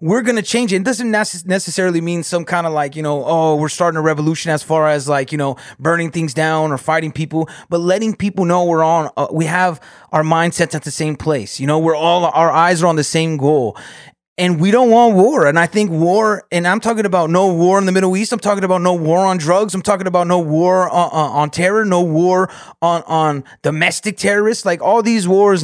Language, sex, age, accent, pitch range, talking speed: English, male, 30-49, American, 155-185 Hz, 240 wpm